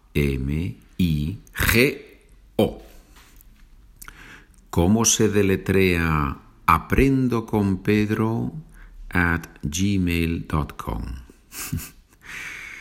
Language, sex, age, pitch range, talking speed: Spanish, male, 50-69, 70-95 Hz, 55 wpm